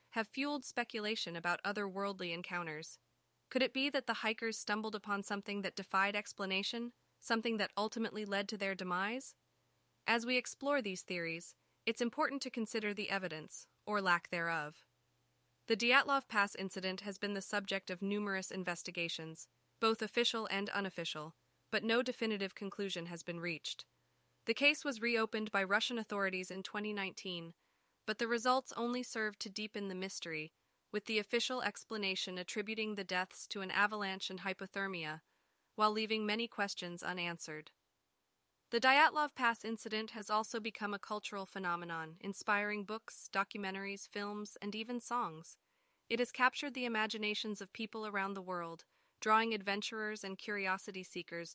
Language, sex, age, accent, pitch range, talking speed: English, female, 20-39, American, 185-225 Hz, 150 wpm